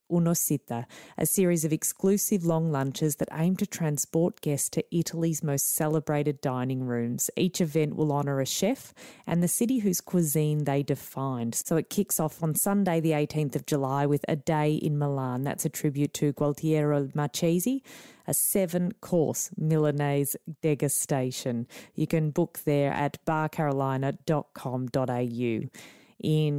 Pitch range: 140-175 Hz